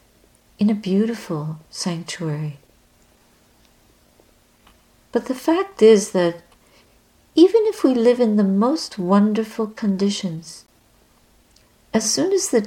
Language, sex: English, female